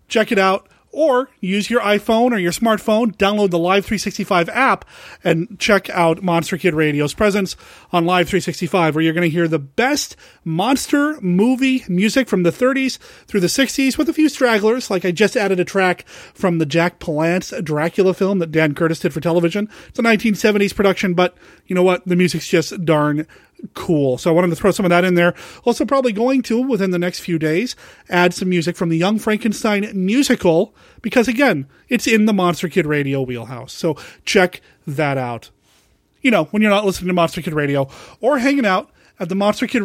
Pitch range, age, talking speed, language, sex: 175-220 Hz, 30-49, 200 wpm, English, male